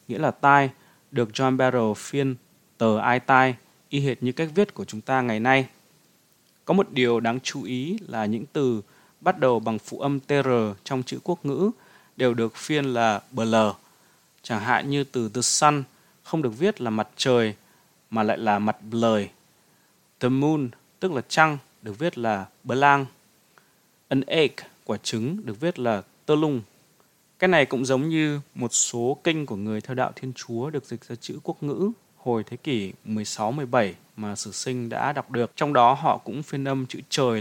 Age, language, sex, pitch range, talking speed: 20-39, Vietnamese, male, 115-140 Hz, 190 wpm